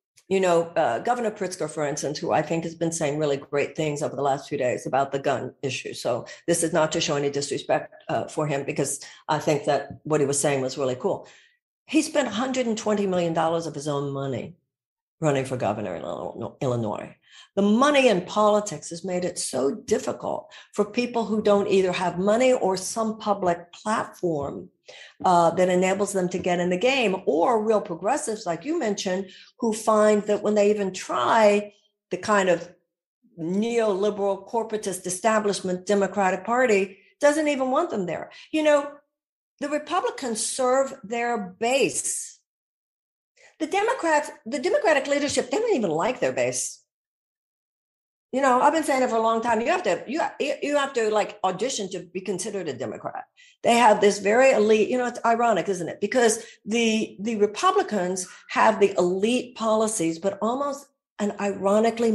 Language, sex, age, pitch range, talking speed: English, female, 60-79, 170-235 Hz, 180 wpm